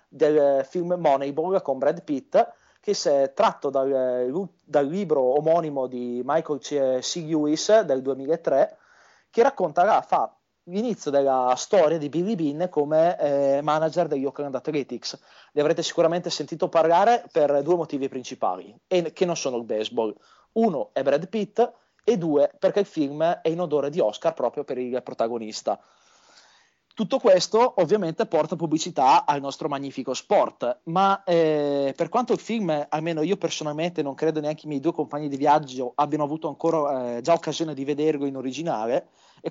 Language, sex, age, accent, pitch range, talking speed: Italian, male, 30-49, native, 140-175 Hz, 160 wpm